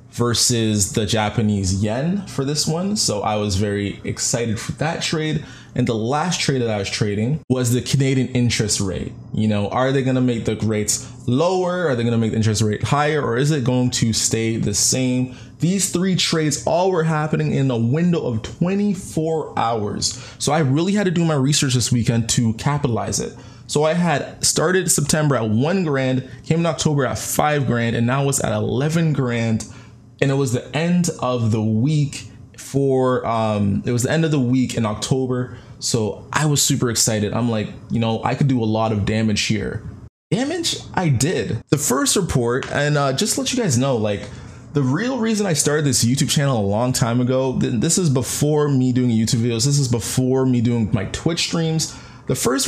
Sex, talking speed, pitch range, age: male, 205 wpm, 115-150 Hz, 20-39